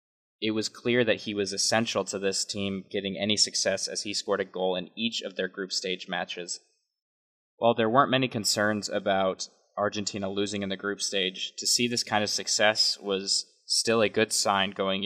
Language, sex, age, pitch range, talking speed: English, male, 20-39, 100-120 Hz, 195 wpm